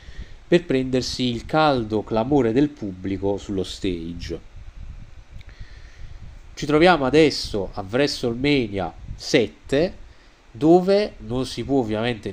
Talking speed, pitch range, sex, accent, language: 95 wpm, 95-130 Hz, male, native, Italian